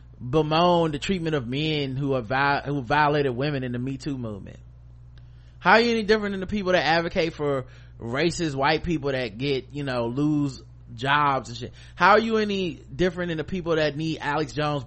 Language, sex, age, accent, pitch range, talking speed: English, male, 20-39, American, 120-170 Hz, 200 wpm